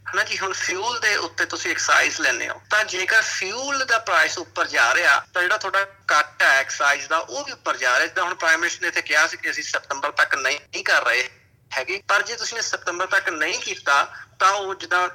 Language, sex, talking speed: Punjabi, male, 215 wpm